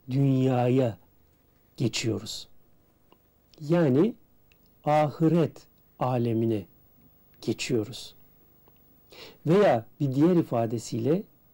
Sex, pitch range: male, 115-155 Hz